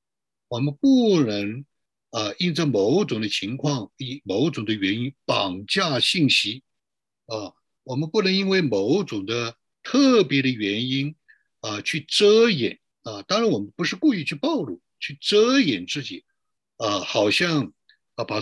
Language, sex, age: Chinese, male, 60-79